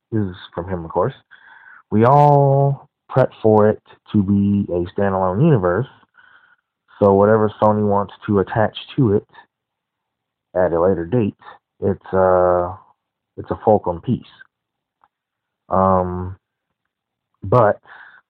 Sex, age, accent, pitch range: male, 30-49, American, 95-115 Hz